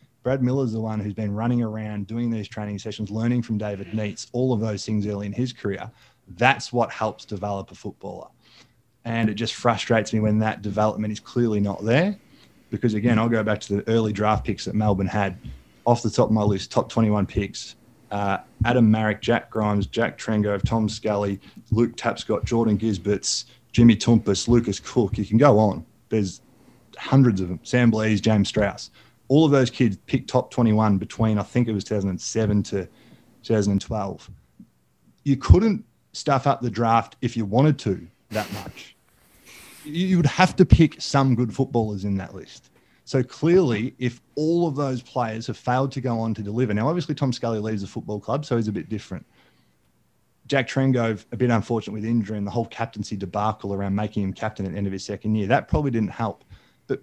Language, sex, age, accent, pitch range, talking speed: English, male, 20-39, Australian, 105-125 Hz, 195 wpm